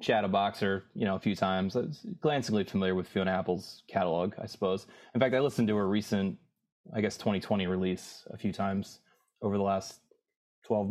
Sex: male